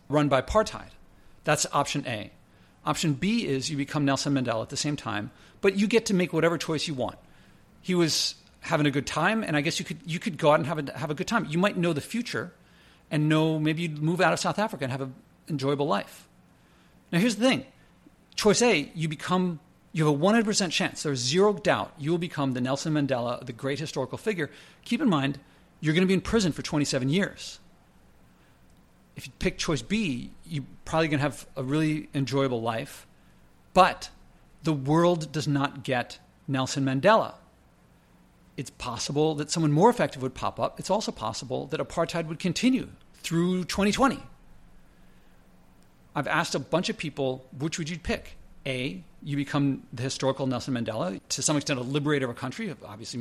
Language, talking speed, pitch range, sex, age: English, 190 wpm, 135-180 Hz, male, 40-59